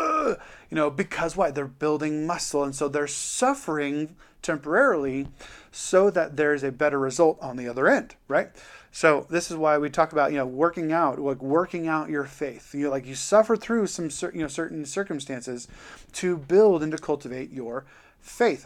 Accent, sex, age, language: American, male, 30-49, English